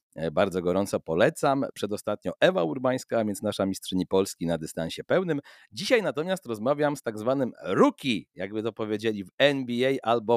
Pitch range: 115-150 Hz